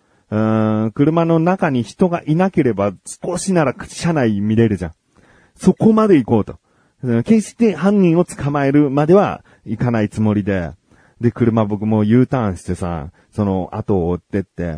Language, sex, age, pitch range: Japanese, male, 40-59, 100-150 Hz